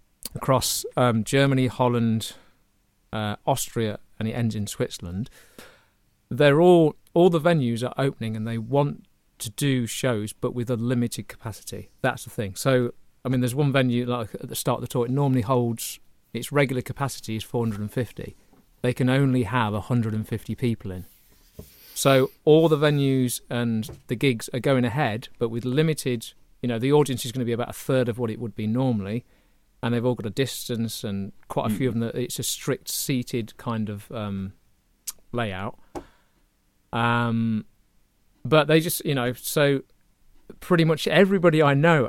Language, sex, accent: English, male, British